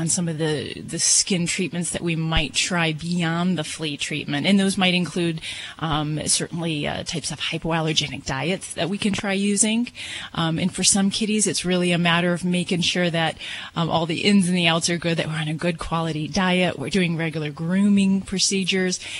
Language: English